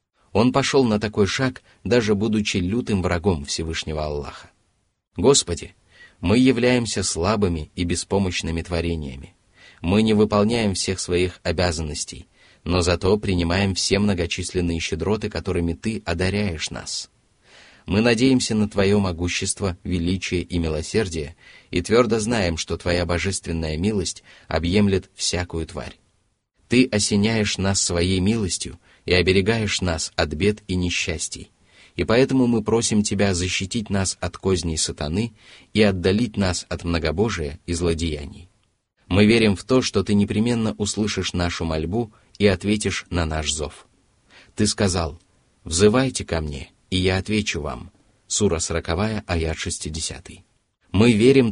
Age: 30-49